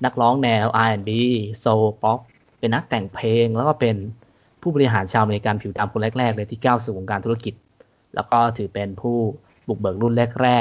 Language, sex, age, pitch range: Thai, male, 20-39, 100-120 Hz